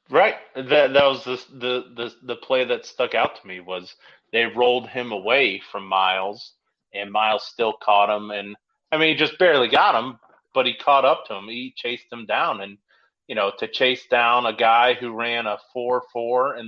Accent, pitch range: American, 110-130 Hz